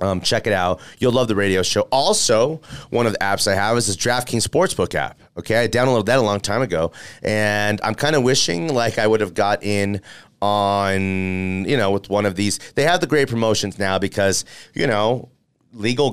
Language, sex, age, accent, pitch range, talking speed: English, male, 30-49, American, 100-130 Hz, 210 wpm